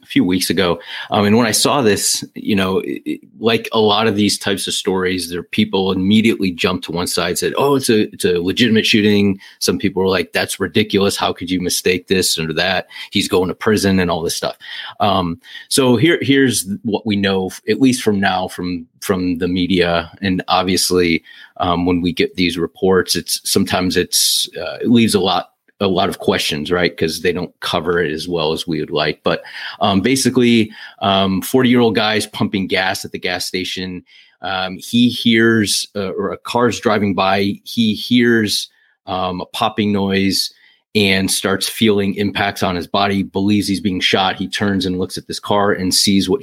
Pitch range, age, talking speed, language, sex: 90-105 Hz, 30-49, 200 wpm, English, male